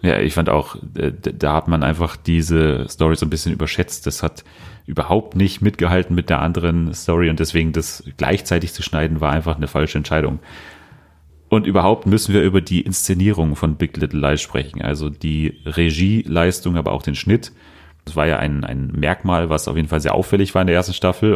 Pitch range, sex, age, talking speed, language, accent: 80-95 Hz, male, 30-49, 195 wpm, German, German